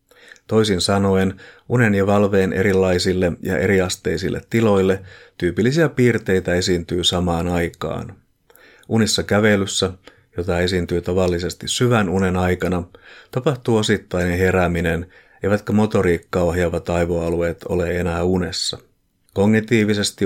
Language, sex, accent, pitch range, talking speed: Finnish, male, native, 90-100 Hz, 100 wpm